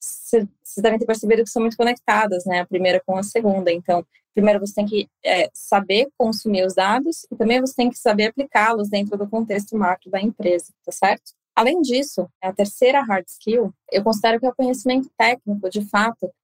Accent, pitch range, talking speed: Brazilian, 195-235 Hz, 195 wpm